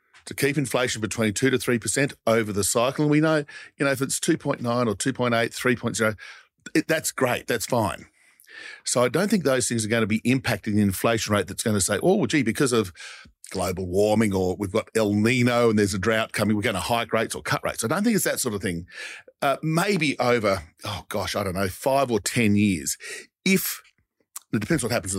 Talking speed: 225 wpm